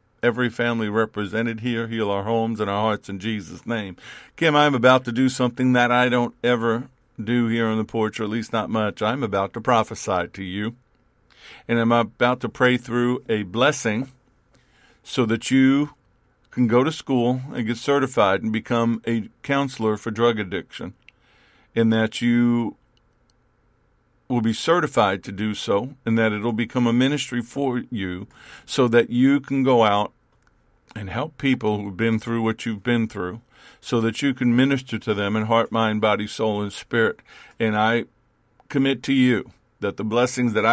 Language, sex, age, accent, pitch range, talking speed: English, male, 50-69, American, 110-125 Hz, 180 wpm